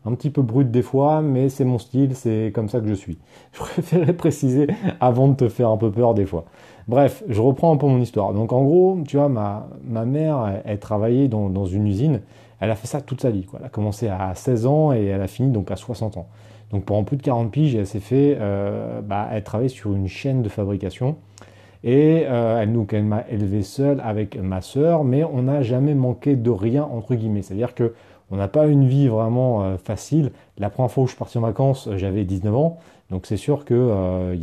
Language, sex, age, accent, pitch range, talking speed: French, male, 30-49, French, 100-130 Hz, 240 wpm